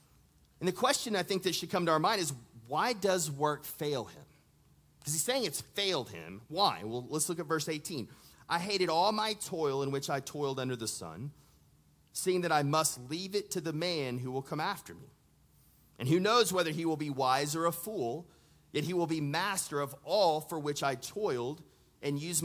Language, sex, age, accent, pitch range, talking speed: English, male, 30-49, American, 140-185 Hz, 215 wpm